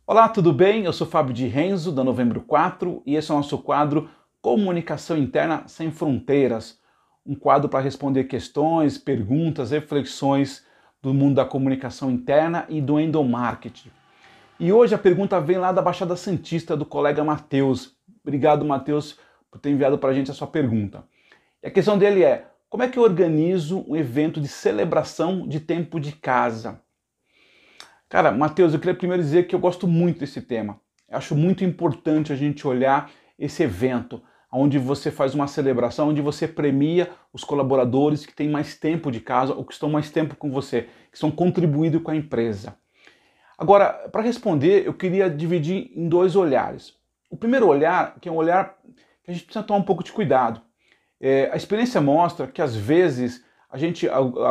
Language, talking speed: Portuguese, 180 wpm